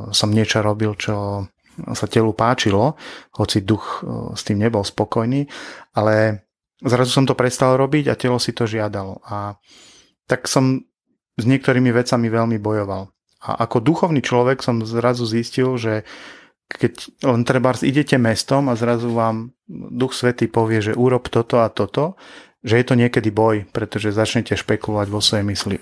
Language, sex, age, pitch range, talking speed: Slovak, male, 30-49, 105-125 Hz, 155 wpm